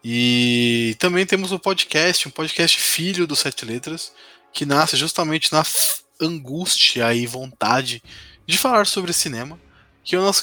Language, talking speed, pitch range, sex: Portuguese, 150 wpm, 120-165 Hz, male